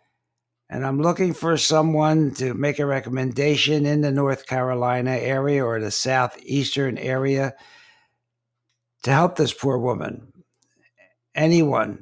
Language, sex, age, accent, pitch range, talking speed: English, male, 60-79, American, 120-140 Hz, 120 wpm